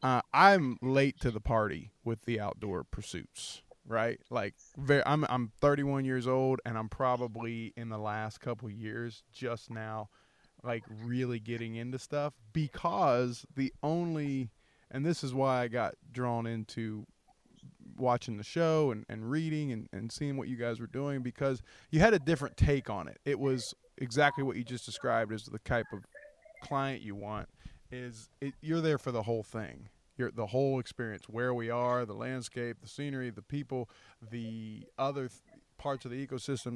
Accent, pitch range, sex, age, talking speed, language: American, 115-140 Hz, male, 20-39, 180 wpm, English